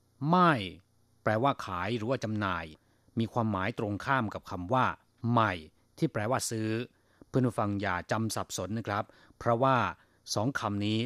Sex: male